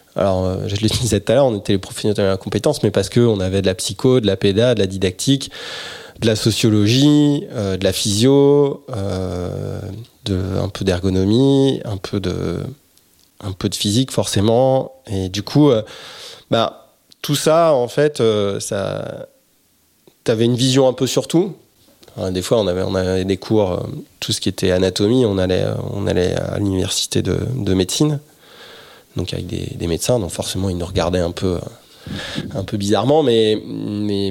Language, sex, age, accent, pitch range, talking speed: French, male, 20-39, French, 95-130 Hz, 185 wpm